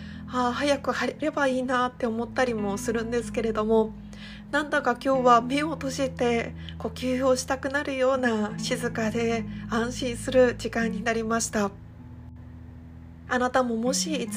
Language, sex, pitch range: Japanese, female, 210-255 Hz